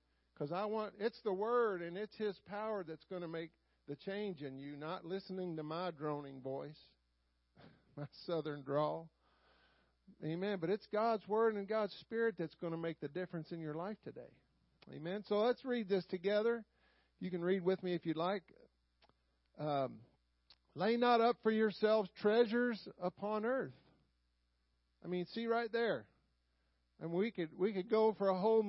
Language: English